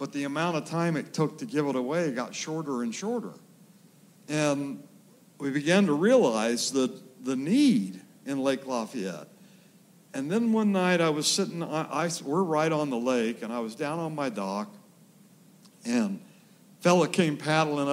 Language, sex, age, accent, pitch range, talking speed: English, male, 60-79, American, 135-195 Hz, 170 wpm